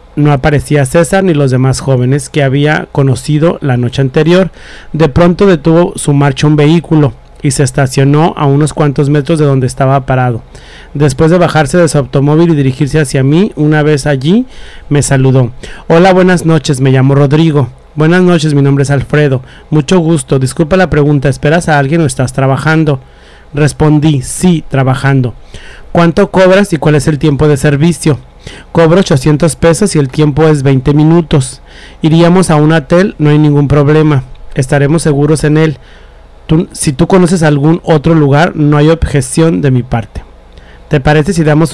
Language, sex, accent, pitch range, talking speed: English, male, Mexican, 140-165 Hz, 170 wpm